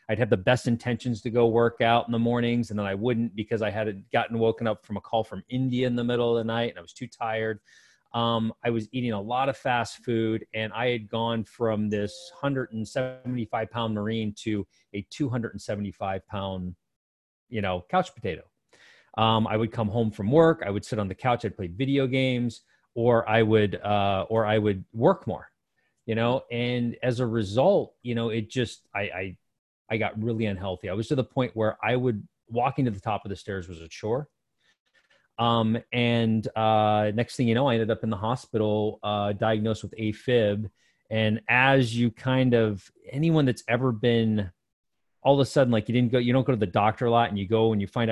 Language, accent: English, American